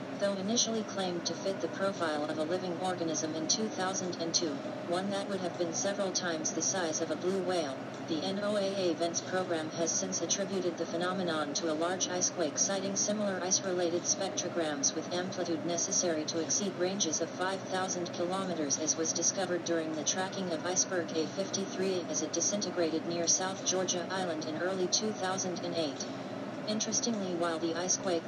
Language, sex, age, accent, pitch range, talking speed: English, female, 40-59, American, 170-195 Hz, 160 wpm